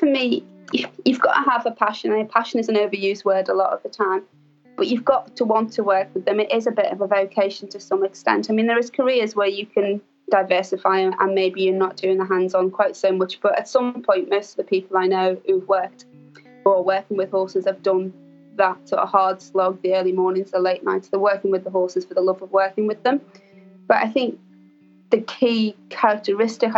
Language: English